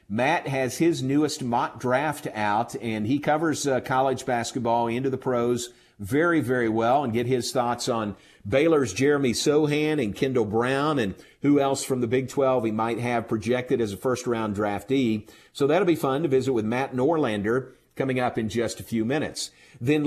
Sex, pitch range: male, 115-145 Hz